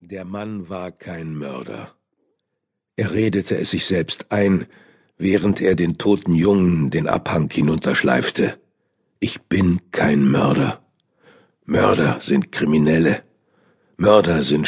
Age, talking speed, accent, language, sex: 60-79, 115 wpm, German, German, male